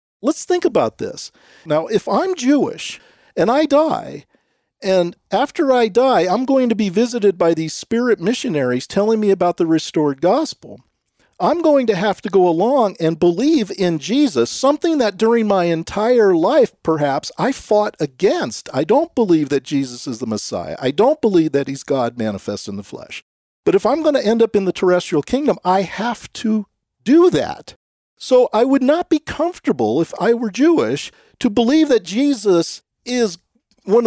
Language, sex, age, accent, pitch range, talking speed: English, male, 50-69, American, 160-250 Hz, 180 wpm